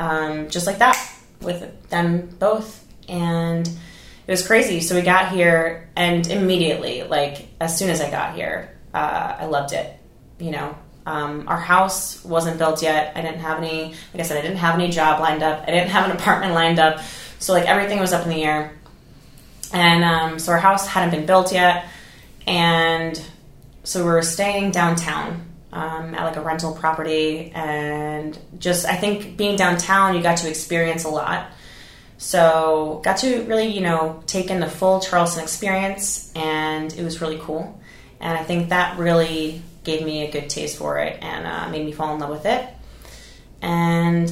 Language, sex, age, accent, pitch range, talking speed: English, female, 20-39, American, 155-175 Hz, 185 wpm